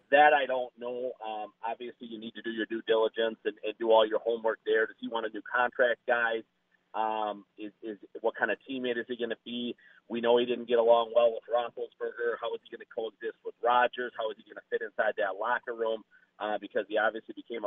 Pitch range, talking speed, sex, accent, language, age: 115-150 Hz, 240 wpm, male, American, English, 40-59